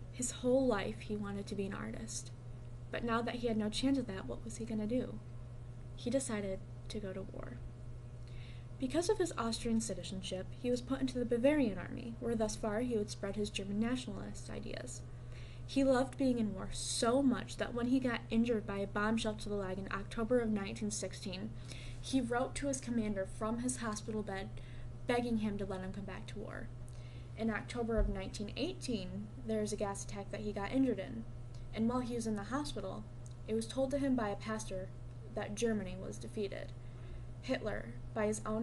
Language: English